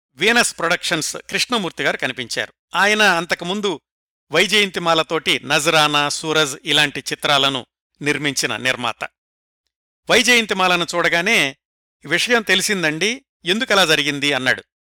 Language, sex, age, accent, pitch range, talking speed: Telugu, male, 60-79, native, 150-200 Hz, 80 wpm